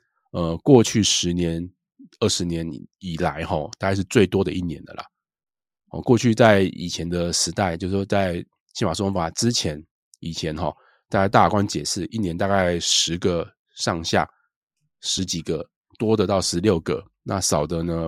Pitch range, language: 85-105 Hz, Chinese